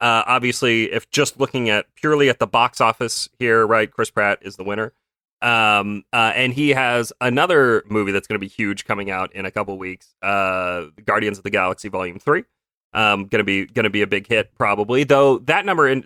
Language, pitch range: English, 100-140 Hz